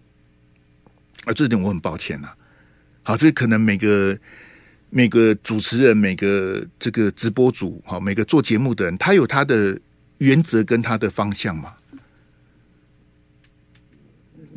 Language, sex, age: Chinese, male, 50-69